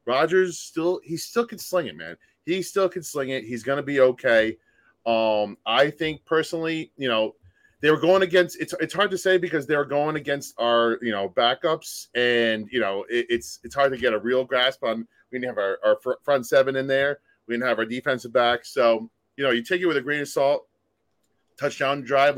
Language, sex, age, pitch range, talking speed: English, male, 30-49, 120-170 Hz, 230 wpm